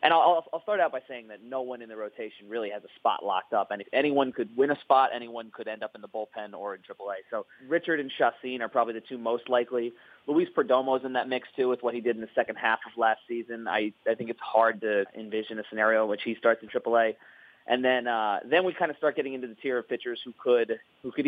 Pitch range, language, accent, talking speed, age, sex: 110-130 Hz, English, American, 275 wpm, 30-49, male